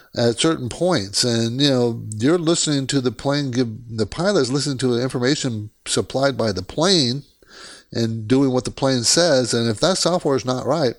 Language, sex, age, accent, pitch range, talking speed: English, male, 60-79, American, 115-165 Hz, 190 wpm